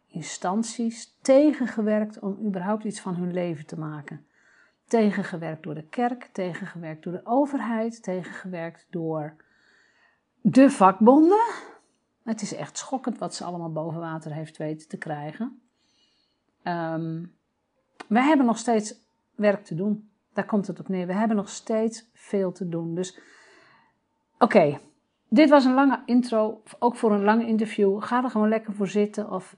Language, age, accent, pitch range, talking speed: Dutch, 50-69, Dutch, 175-225 Hz, 150 wpm